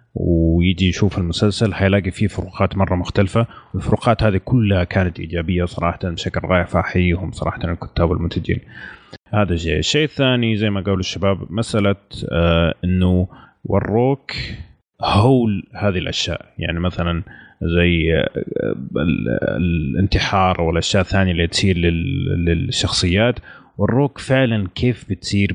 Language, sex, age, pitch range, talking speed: Arabic, male, 30-49, 90-110 Hz, 110 wpm